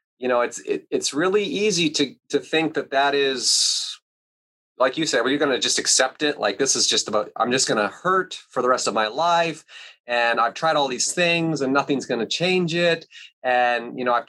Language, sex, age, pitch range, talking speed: English, male, 30-49, 135-165 Hz, 230 wpm